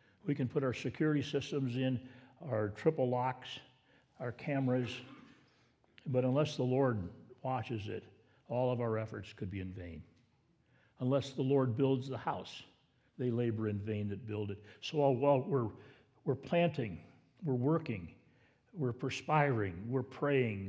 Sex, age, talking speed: male, 60-79, 145 wpm